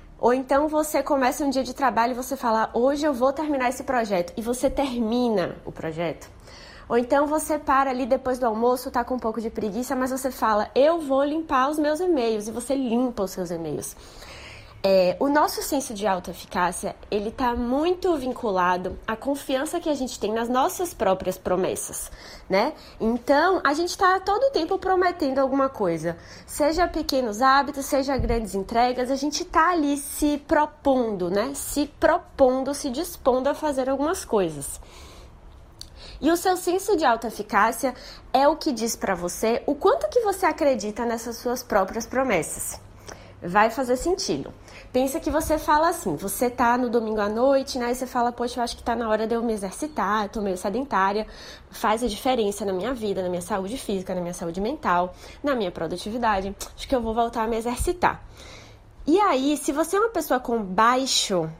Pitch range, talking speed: 205-285 Hz, 185 wpm